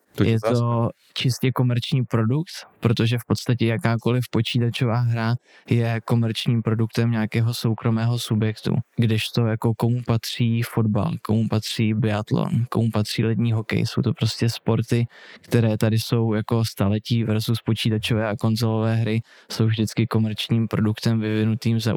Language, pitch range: Czech, 110-115 Hz